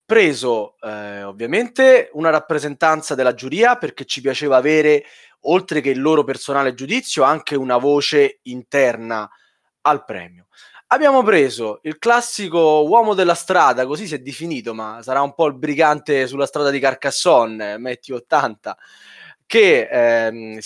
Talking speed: 140 wpm